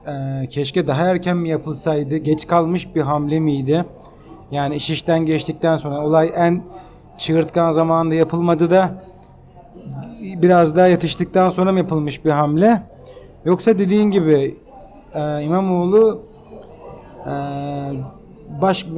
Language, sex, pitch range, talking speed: Turkish, male, 155-190 Hz, 110 wpm